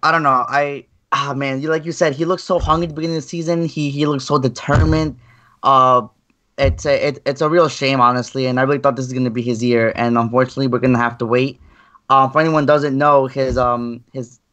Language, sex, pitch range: English, male, 125-150 Hz